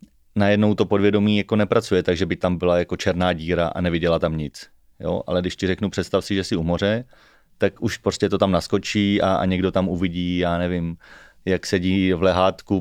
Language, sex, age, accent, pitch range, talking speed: Czech, male, 30-49, native, 90-100 Hz, 205 wpm